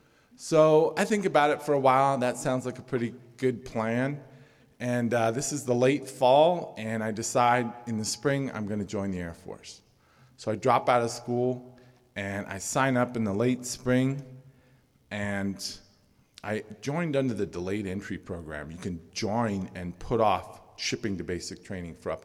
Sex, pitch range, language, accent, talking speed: male, 100-130 Hz, English, American, 190 wpm